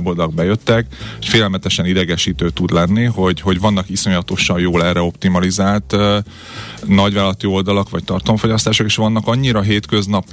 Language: Hungarian